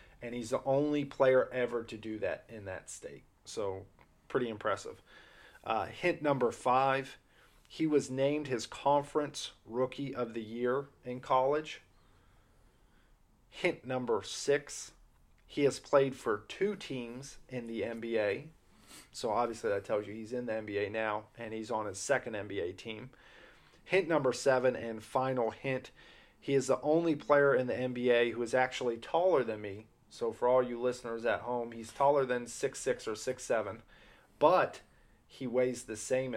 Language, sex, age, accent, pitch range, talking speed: English, male, 40-59, American, 115-140 Hz, 160 wpm